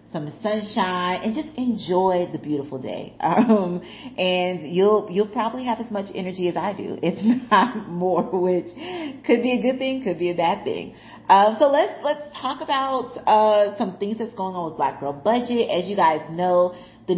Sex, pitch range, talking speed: female, 160-220 Hz, 190 wpm